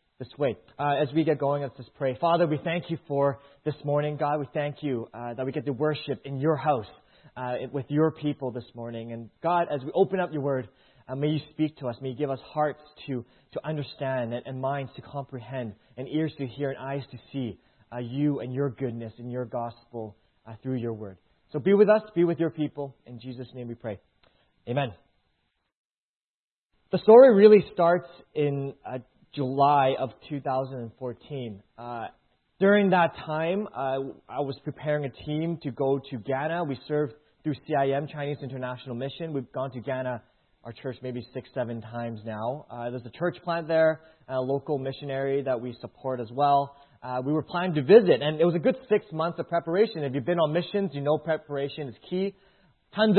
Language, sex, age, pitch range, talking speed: English, male, 20-39, 125-155 Hz, 200 wpm